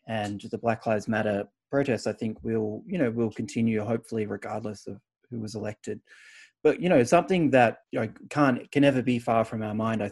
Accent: Australian